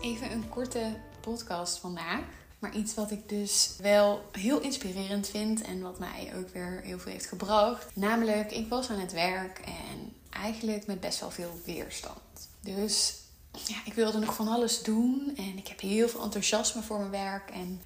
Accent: Dutch